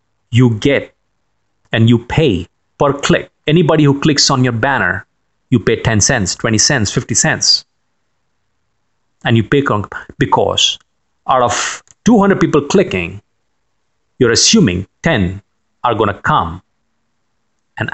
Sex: male